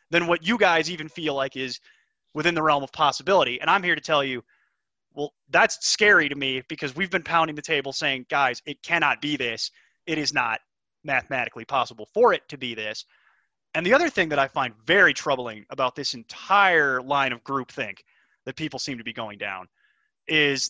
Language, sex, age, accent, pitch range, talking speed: English, male, 30-49, American, 140-215 Hz, 205 wpm